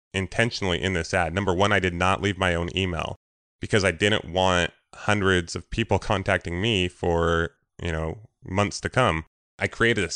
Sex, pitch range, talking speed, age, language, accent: male, 85-105 Hz, 185 wpm, 20-39, English, American